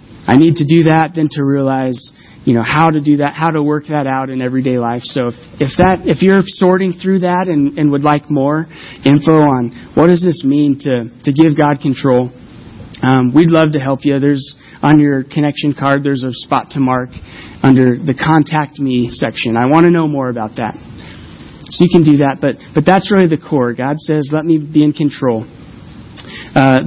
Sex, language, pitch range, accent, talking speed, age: male, English, 130-160 Hz, American, 210 wpm, 30-49